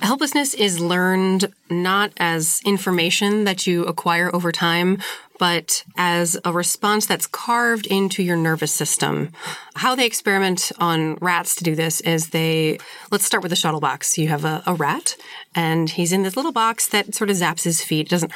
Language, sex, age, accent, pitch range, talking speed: English, female, 30-49, American, 170-205 Hz, 185 wpm